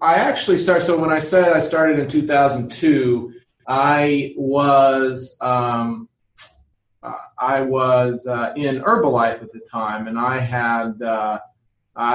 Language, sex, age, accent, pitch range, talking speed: English, male, 30-49, American, 125-140 Hz, 135 wpm